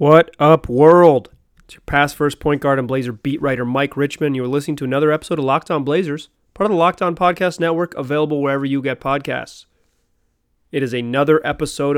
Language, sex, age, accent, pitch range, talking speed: English, male, 30-49, American, 130-155 Hz, 205 wpm